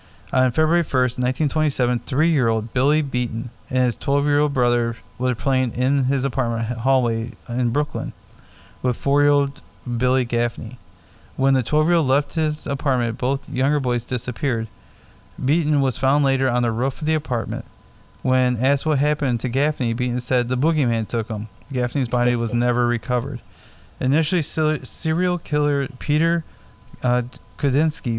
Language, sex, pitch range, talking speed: English, male, 115-140 Hz, 140 wpm